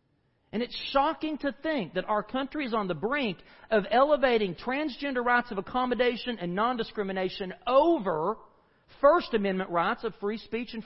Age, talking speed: 40-59, 155 wpm